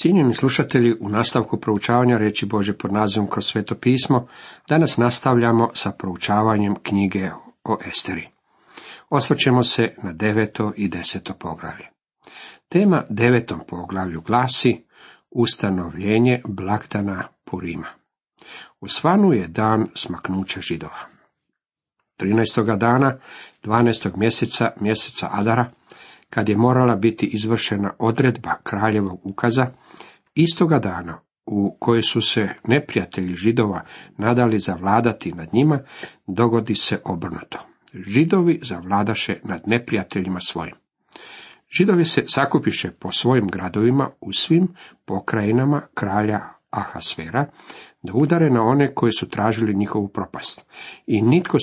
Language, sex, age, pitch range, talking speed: Croatian, male, 50-69, 100-125 Hz, 110 wpm